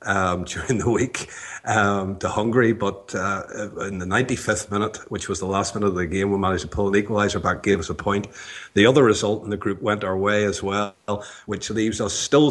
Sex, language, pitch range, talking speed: male, English, 95-110 Hz, 225 wpm